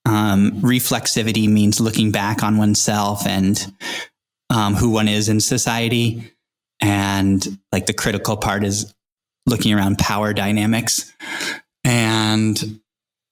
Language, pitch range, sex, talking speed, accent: English, 105-125 Hz, male, 115 wpm, American